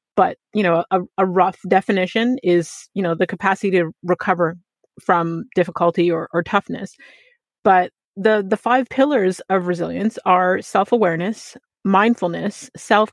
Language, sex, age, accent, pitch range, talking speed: English, female, 30-49, American, 180-220 Hz, 140 wpm